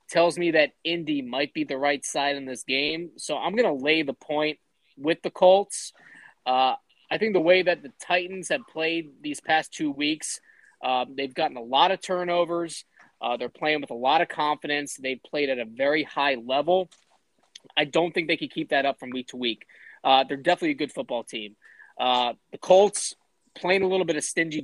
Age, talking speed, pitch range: 20-39, 210 wpm, 130-170 Hz